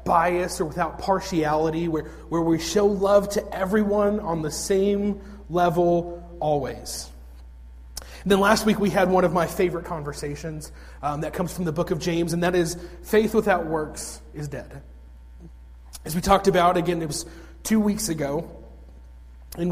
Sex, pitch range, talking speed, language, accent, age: male, 150-200 Hz, 165 wpm, English, American, 30-49